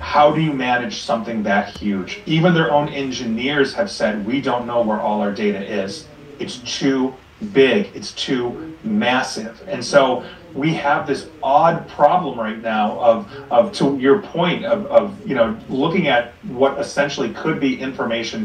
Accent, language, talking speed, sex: American, English, 170 wpm, male